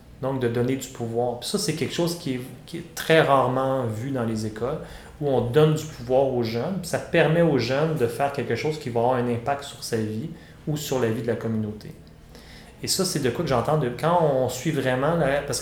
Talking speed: 245 wpm